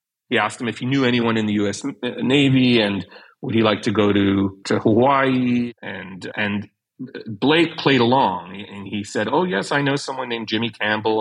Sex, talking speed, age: male, 195 wpm, 40-59